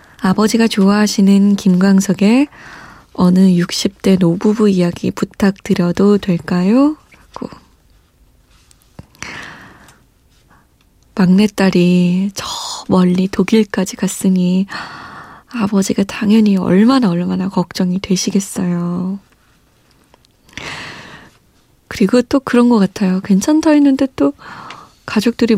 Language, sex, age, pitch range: Korean, female, 20-39, 185-230 Hz